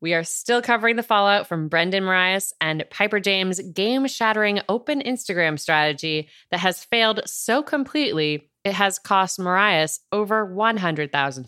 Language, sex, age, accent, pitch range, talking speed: English, female, 30-49, American, 155-200 Hz, 145 wpm